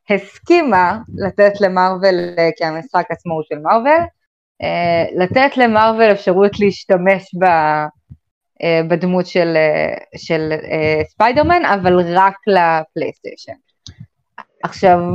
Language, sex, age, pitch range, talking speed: Hebrew, female, 20-39, 170-220 Hz, 85 wpm